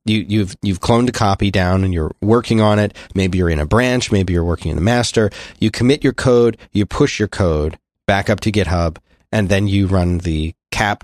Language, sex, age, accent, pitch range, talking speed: English, male, 30-49, American, 95-115 Hz, 225 wpm